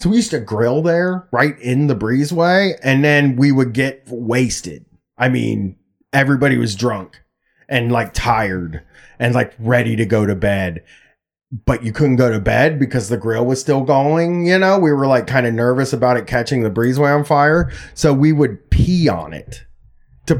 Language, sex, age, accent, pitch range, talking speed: English, male, 30-49, American, 115-150 Hz, 190 wpm